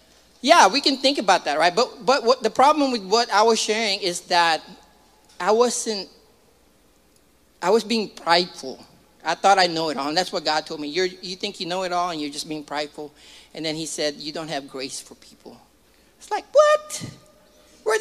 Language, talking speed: English, 215 wpm